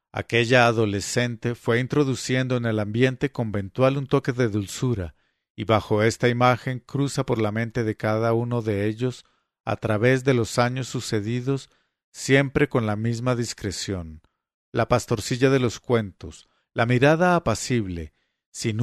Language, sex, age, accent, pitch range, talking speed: English, male, 50-69, Mexican, 105-130 Hz, 145 wpm